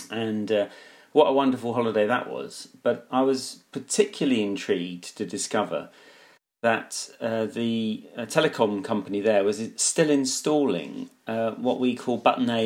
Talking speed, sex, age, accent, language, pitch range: 145 wpm, male, 40-59, British, English, 105-130 Hz